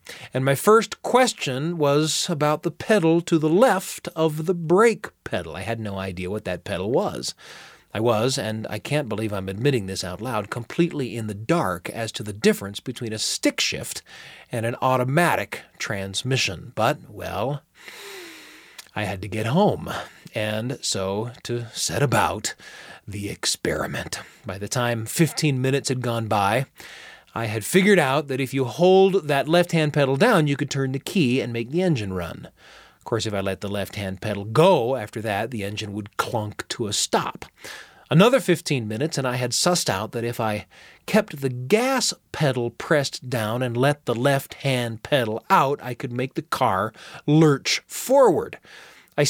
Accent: American